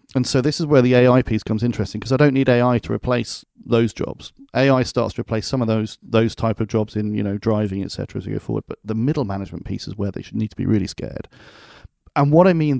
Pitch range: 110-135 Hz